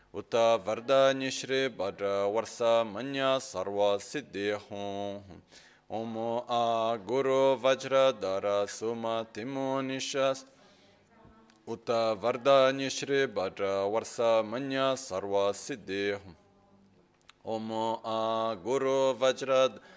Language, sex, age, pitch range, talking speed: Italian, male, 30-49, 100-130 Hz, 85 wpm